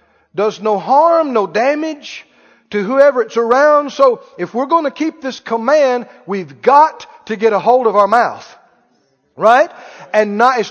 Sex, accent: male, American